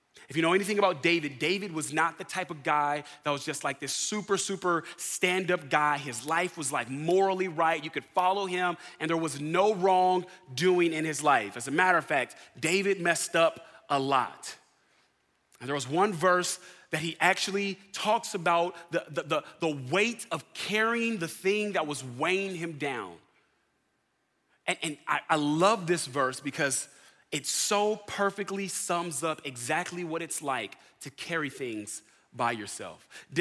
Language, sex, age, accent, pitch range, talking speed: English, male, 30-49, American, 155-195 Hz, 175 wpm